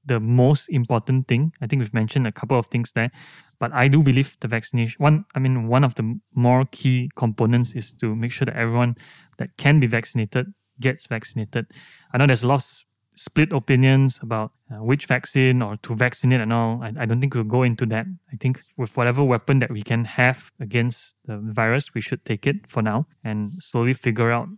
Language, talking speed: English, 210 wpm